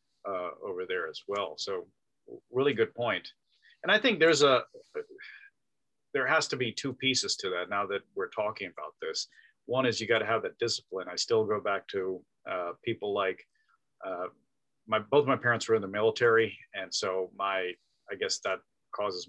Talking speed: 185 wpm